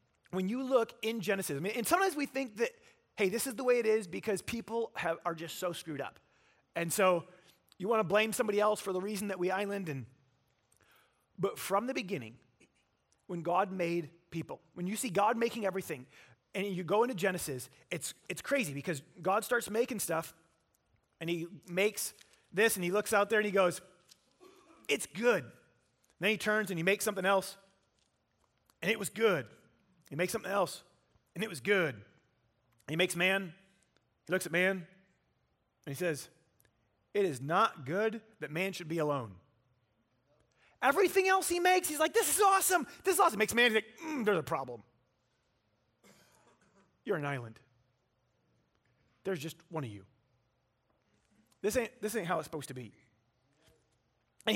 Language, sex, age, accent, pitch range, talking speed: English, male, 30-49, American, 140-225 Hz, 180 wpm